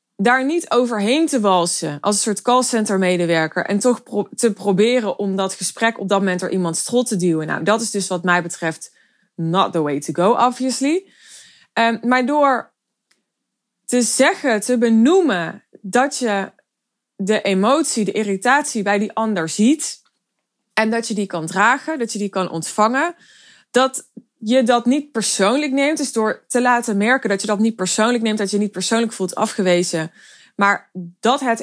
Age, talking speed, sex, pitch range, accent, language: 20-39, 175 wpm, female, 200-255 Hz, Dutch, Dutch